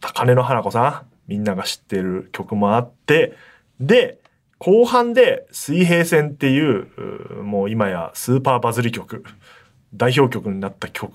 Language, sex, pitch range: Japanese, male, 100-145 Hz